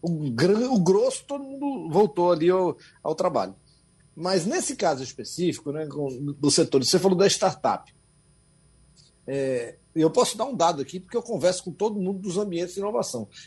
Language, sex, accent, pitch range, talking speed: Portuguese, male, Brazilian, 145-220 Hz, 160 wpm